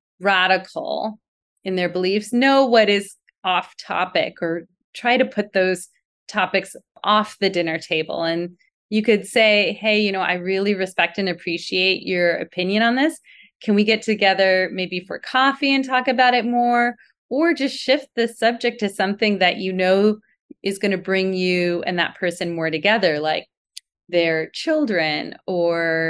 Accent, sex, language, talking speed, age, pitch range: American, female, English, 165 wpm, 30-49, 175-230 Hz